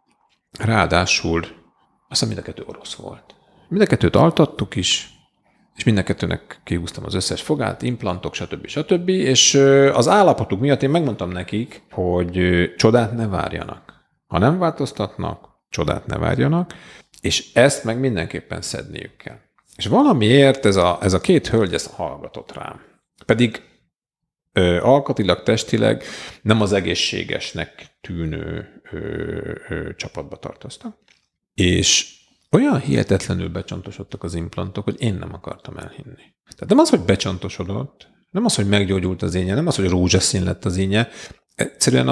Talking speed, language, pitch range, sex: 130 wpm, Hungarian, 90-130 Hz, male